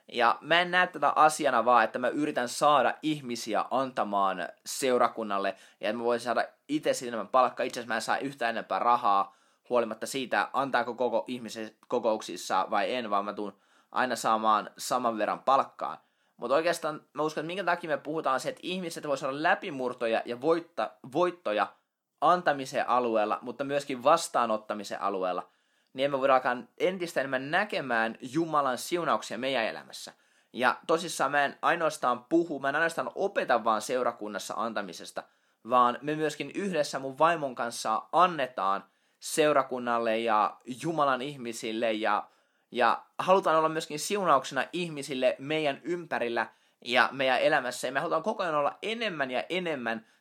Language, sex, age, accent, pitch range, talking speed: Finnish, male, 20-39, native, 120-155 Hz, 150 wpm